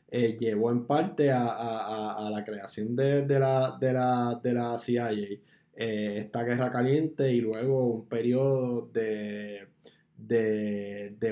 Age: 20-39